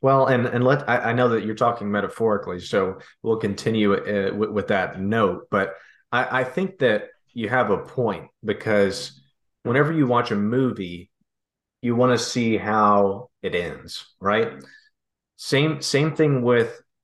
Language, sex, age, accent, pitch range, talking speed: English, male, 30-49, American, 100-135 Hz, 160 wpm